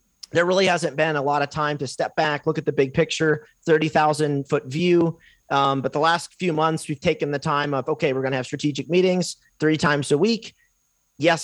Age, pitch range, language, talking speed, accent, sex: 30-49, 135-170 Hz, English, 220 wpm, American, male